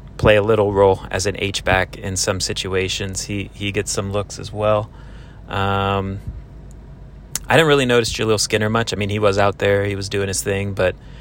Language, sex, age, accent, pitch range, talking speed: English, male, 30-49, American, 100-115 Hz, 200 wpm